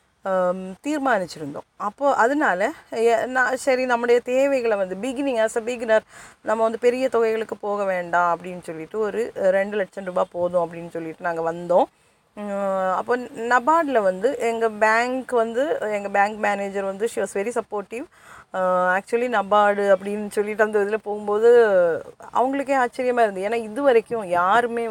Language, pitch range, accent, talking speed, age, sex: Tamil, 190-240 Hz, native, 135 wpm, 20-39, female